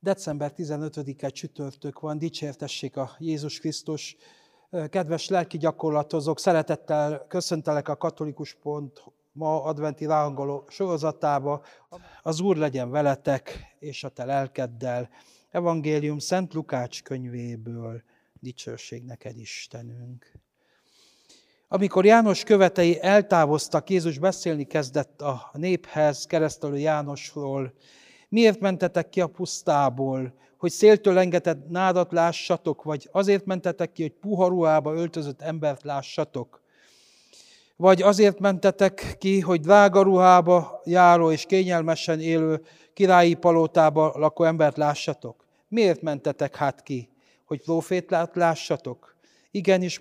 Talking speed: 105 wpm